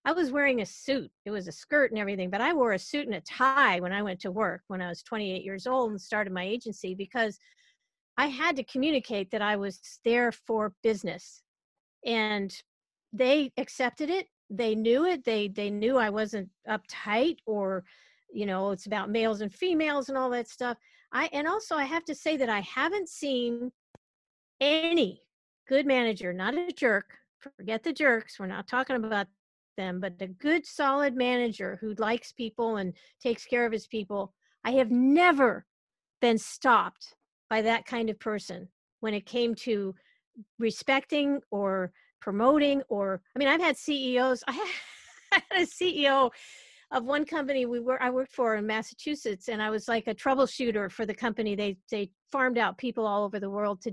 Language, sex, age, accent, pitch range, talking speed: English, female, 50-69, American, 205-270 Hz, 185 wpm